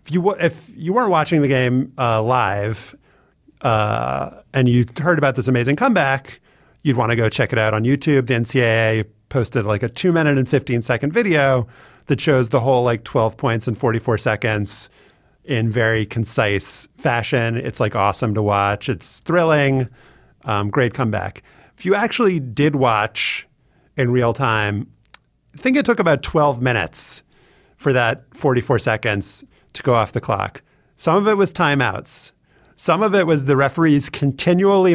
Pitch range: 115-145 Hz